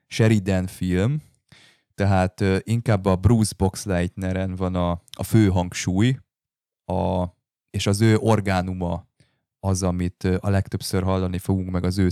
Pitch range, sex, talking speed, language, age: 90-105 Hz, male, 130 wpm, Hungarian, 20-39